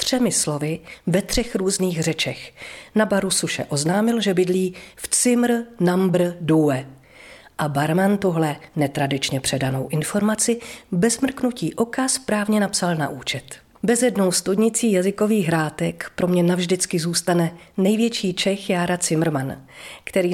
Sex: female